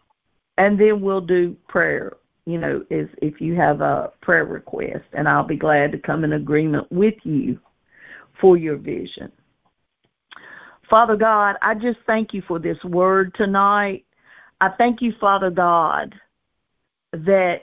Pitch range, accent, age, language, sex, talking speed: 185-230 Hz, American, 50-69, English, female, 145 wpm